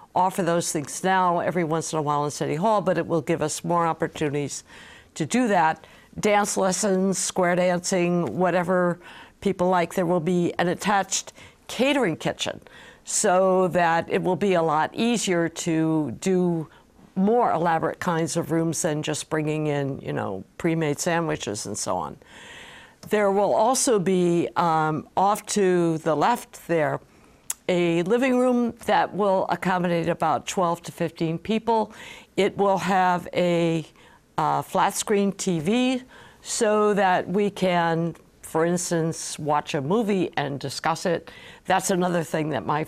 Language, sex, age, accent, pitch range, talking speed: English, female, 60-79, American, 165-195 Hz, 155 wpm